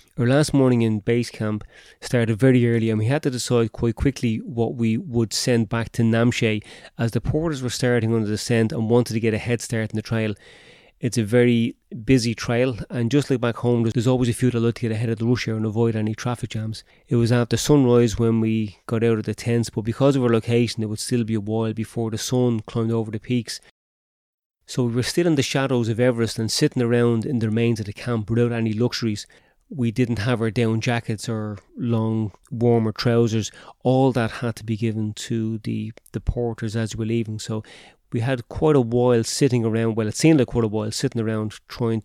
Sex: male